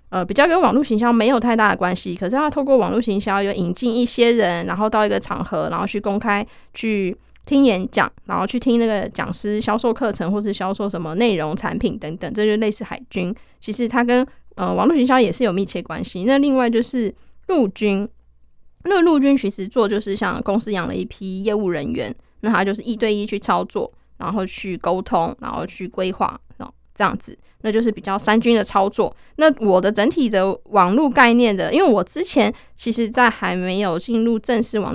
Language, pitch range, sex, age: Chinese, 195-245 Hz, female, 20-39